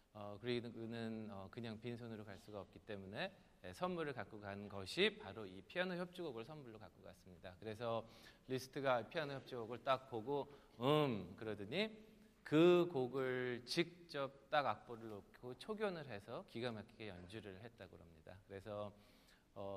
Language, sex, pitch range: Korean, male, 105-140 Hz